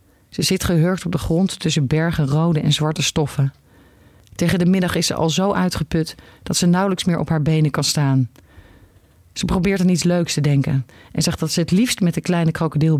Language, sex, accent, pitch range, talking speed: Dutch, female, Dutch, 140-170 Hz, 210 wpm